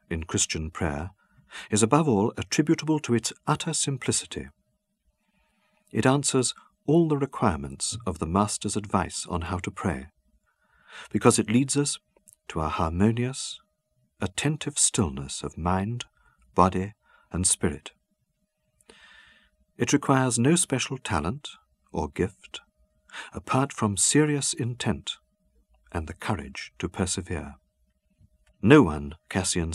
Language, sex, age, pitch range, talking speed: English, male, 50-69, 90-135 Hz, 115 wpm